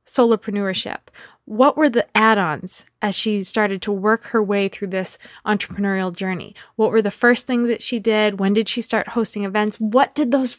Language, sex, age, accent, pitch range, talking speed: English, female, 20-39, American, 190-240 Hz, 185 wpm